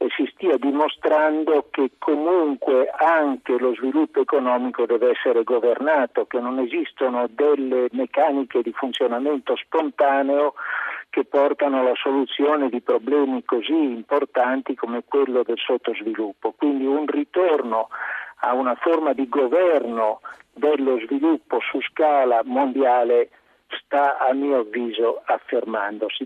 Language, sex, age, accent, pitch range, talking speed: Italian, male, 50-69, native, 130-175 Hz, 115 wpm